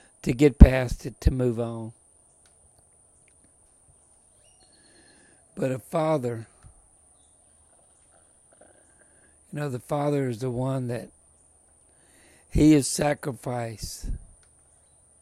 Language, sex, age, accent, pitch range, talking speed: English, male, 60-79, American, 80-130 Hz, 85 wpm